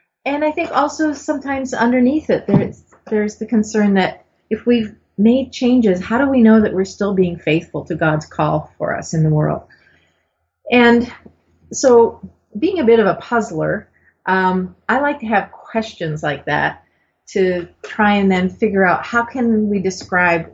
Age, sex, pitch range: 40-59, female, 170-230 Hz